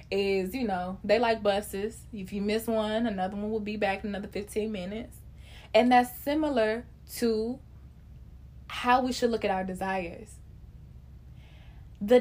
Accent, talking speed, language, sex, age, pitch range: American, 150 wpm, English, female, 20-39, 195-250 Hz